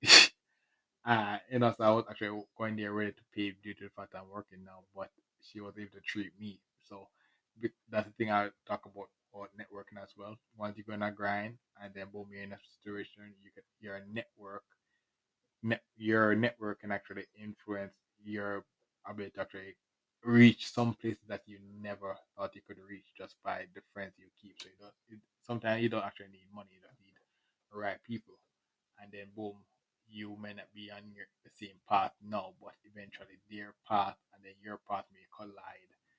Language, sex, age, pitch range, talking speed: English, male, 20-39, 100-105 Hz, 195 wpm